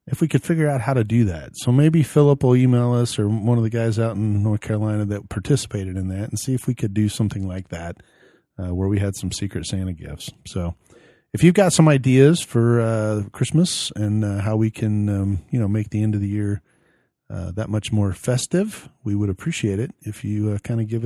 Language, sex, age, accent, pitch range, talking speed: English, male, 40-59, American, 100-125 Hz, 235 wpm